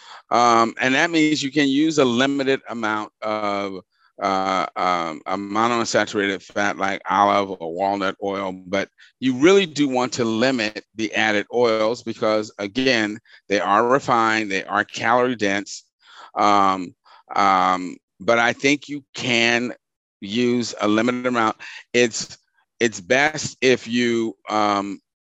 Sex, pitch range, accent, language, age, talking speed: male, 100-125 Hz, American, English, 40-59, 135 wpm